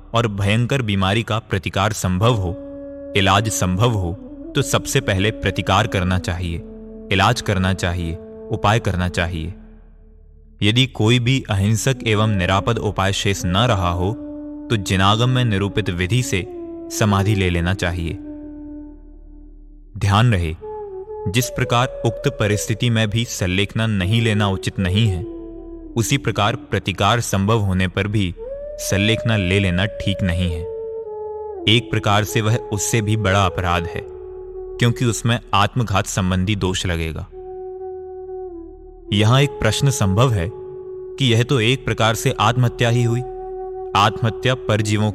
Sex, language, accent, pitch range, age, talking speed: male, Hindi, native, 100-140 Hz, 30-49, 135 wpm